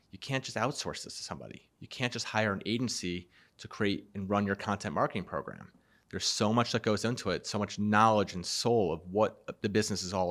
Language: English